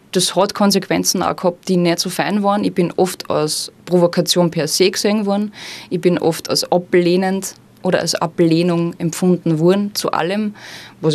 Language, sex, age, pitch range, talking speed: German, female, 20-39, 165-190 Hz, 170 wpm